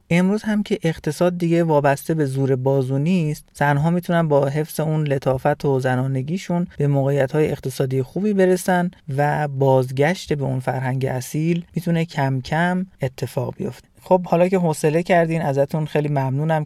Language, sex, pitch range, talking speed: Persian, male, 140-170 Hz, 150 wpm